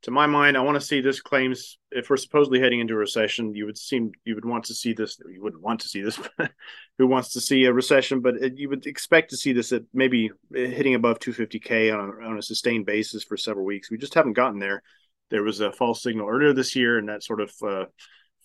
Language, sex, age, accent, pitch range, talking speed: English, male, 30-49, American, 110-135 Hz, 250 wpm